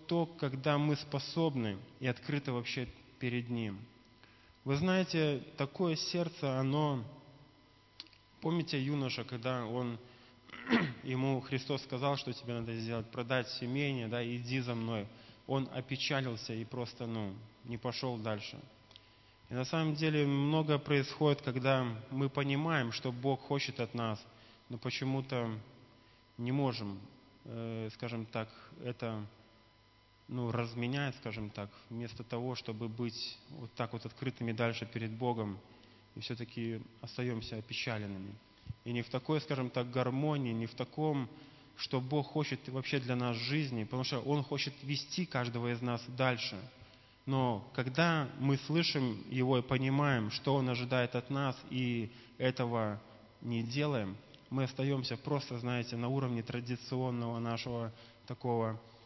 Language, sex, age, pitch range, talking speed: Russian, male, 20-39, 115-140 Hz, 130 wpm